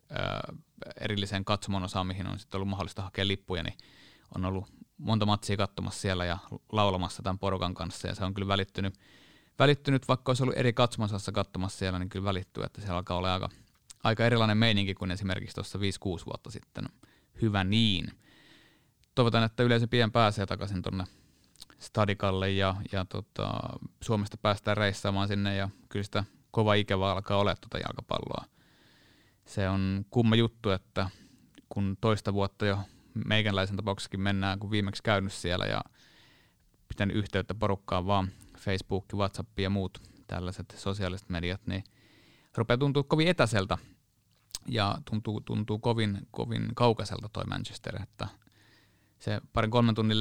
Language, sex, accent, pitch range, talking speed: Finnish, male, native, 95-110 Hz, 150 wpm